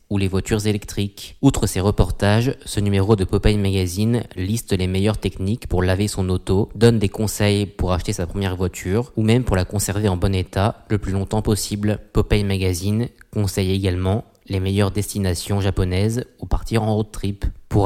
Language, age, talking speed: French, 20-39, 180 wpm